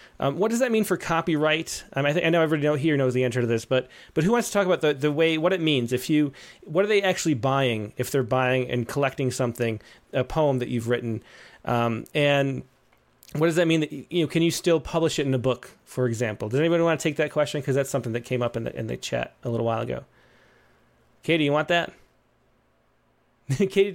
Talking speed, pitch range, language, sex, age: 245 wpm, 135-170 Hz, English, male, 30-49